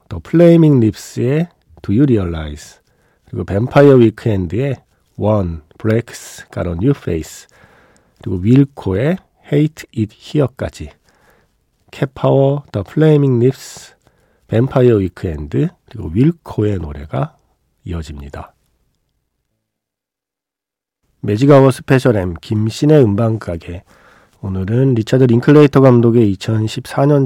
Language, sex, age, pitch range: Korean, male, 40-59, 95-135 Hz